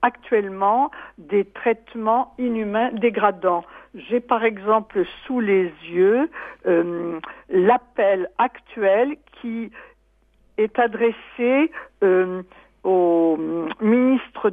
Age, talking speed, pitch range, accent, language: 60-79, 85 wpm, 190-260 Hz, French, French